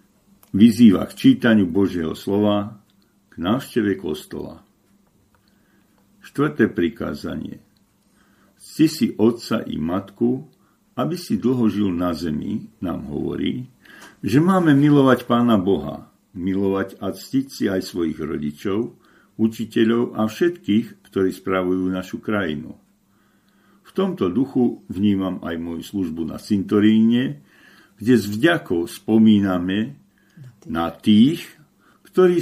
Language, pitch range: Slovak, 95-140 Hz